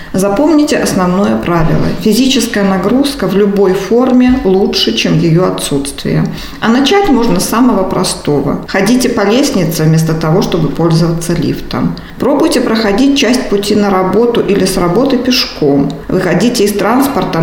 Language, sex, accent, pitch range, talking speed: Russian, female, native, 170-225 Hz, 135 wpm